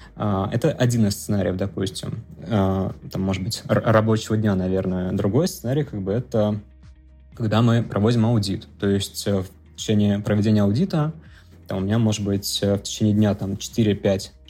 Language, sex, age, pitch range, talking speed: Russian, male, 20-39, 100-115 Hz, 160 wpm